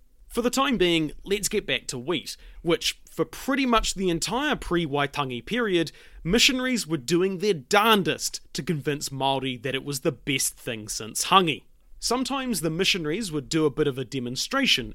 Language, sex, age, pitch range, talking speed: English, male, 30-49, 140-215 Hz, 175 wpm